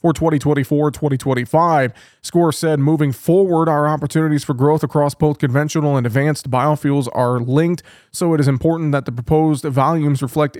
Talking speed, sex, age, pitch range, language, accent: 155 wpm, male, 20-39, 135-150 Hz, English, American